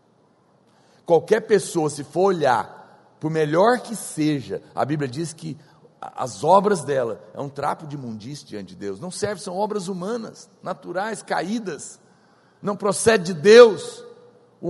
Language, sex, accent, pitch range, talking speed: Portuguese, male, Brazilian, 155-240 Hz, 145 wpm